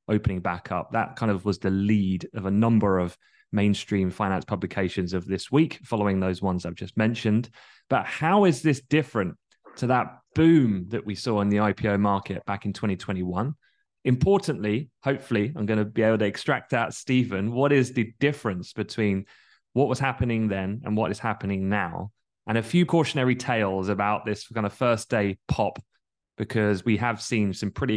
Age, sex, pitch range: 20-39, male, 100-125 Hz